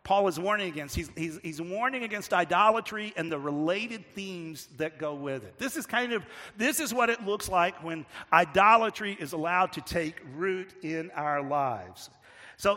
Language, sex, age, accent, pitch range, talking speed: English, male, 50-69, American, 150-190 Hz, 185 wpm